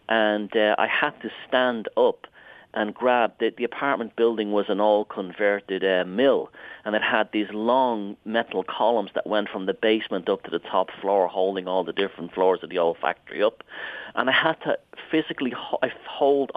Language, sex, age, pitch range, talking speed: English, male, 40-59, 100-130 Hz, 180 wpm